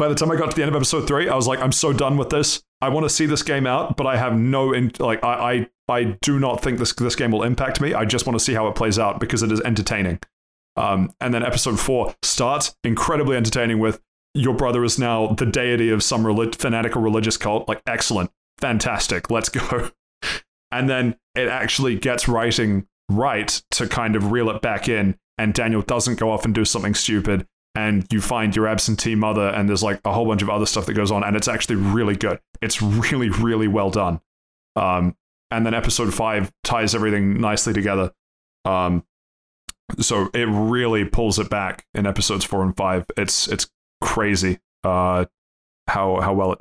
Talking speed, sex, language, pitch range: 205 wpm, male, English, 100-120 Hz